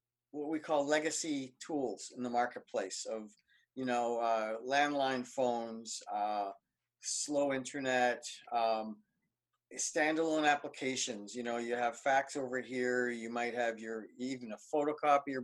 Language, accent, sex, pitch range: English, American, male, 125-160 Hz